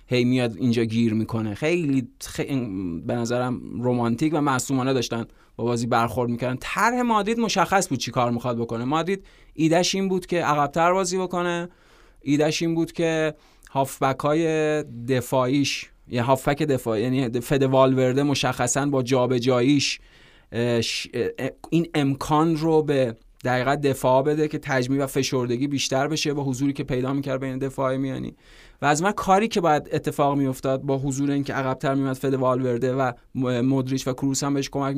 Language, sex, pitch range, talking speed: Persian, male, 130-155 Hz, 160 wpm